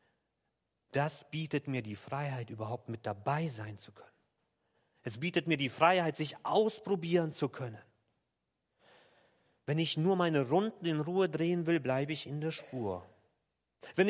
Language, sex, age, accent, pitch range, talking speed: German, male, 40-59, German, 120-165 Hz, 150 wpm